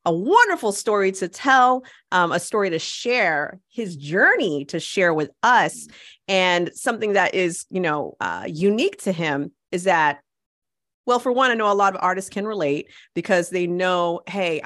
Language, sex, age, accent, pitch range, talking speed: English, female, 30-49, American, 165-210 Hz, 175 wpm